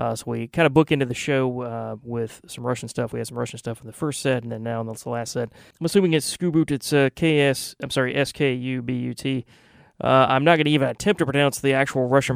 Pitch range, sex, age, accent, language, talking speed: 120-150 Hz, male, 30-49, American, English, 250 wpm